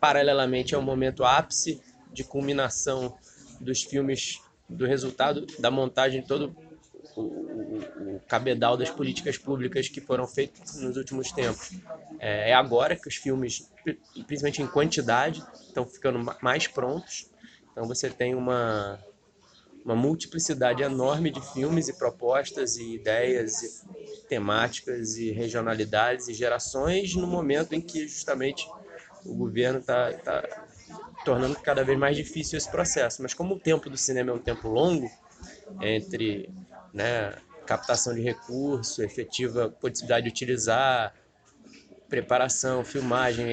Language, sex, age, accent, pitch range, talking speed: Portuguese, male, 20-39, Brazilian, 125-160 Hz, 130 wpm